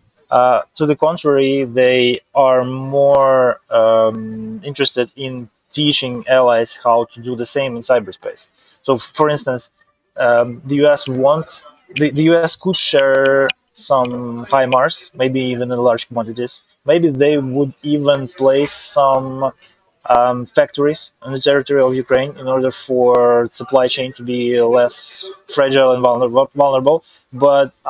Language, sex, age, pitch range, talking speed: English, male, 20-39, 125-145 Hz, 140 wpm